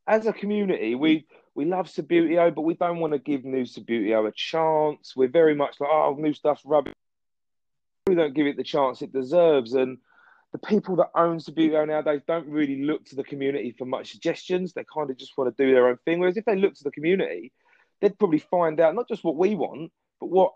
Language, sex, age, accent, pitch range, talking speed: English, male, 30-49, British, 130-185 Hz, 225 wpm